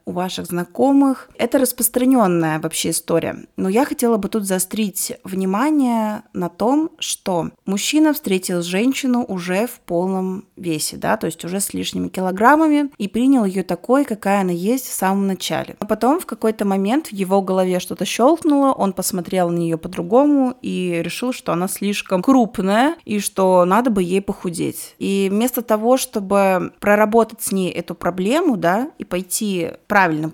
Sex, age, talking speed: female, 20-39, 160 wpm